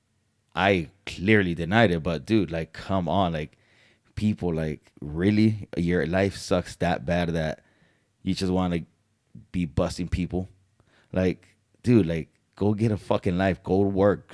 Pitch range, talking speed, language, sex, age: 85-105 Hz, 155 wpm, English, male, 30-49